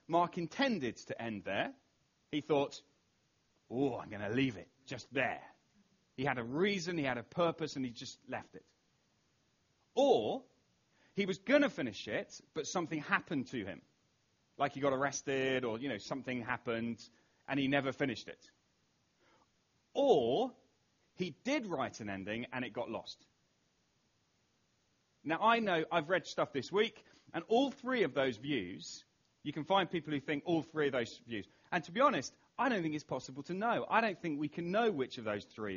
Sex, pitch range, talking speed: male, 130-200 Hz, 185 wpm